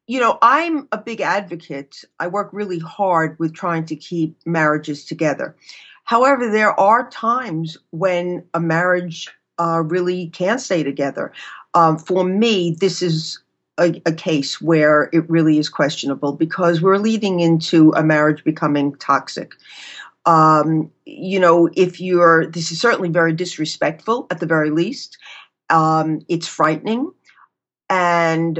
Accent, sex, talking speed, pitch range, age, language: American, female, 140 wpm, 160-185 Hz, 50-69, English